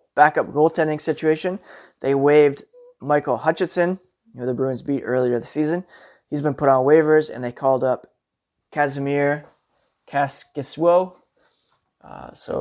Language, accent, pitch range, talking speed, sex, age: English, American, 130-155 Hz, 130 wpm, male, 20-39